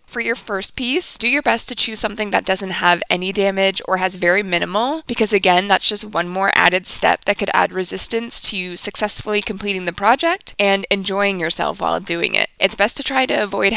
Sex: female